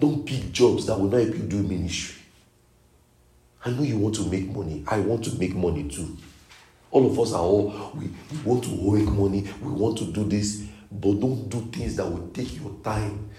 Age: 50-69